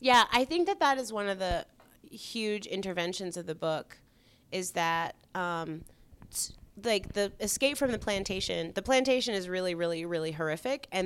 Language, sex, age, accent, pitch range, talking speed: English, female, 30-49, American, 155-190 Hz, 175 wpm